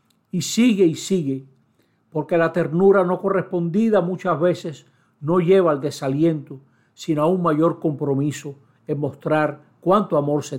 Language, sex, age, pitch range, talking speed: Spanish, male, 60-79, 145-185 Hz, 140 wpm